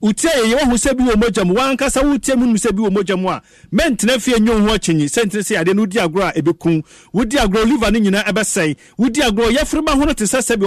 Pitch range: 185-225 Hz